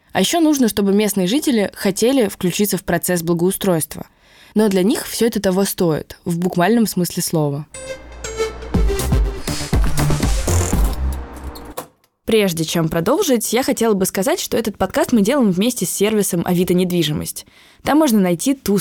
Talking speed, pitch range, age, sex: 135 wpm, 165-220 Hz, 20-39, female